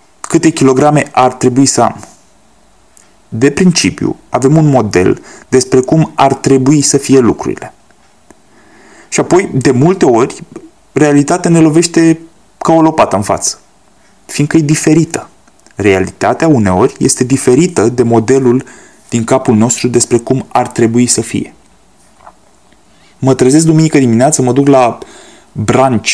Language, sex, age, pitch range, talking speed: Romanian, male, 20-39, 120-165 Hz, 130 wpm